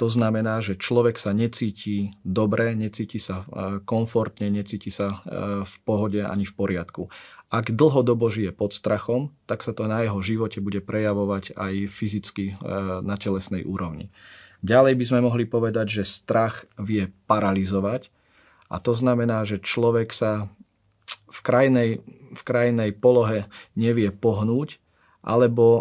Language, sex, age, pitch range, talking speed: Slovak, male, 40-59, 100-115 Hz, 135 wpm